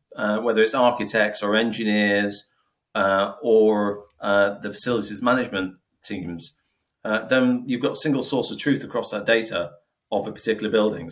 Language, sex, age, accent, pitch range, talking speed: English, male, 40-59, British, 100-110 Hz, 155 wpm